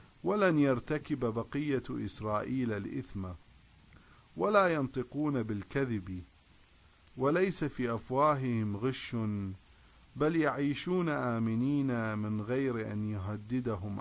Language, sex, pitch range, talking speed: English, male, 100-140 Hz, 80 wpm